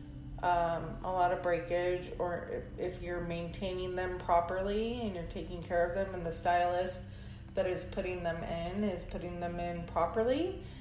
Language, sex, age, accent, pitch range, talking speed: English, female, 30-49, American, 175-210 Hz, 165 wpm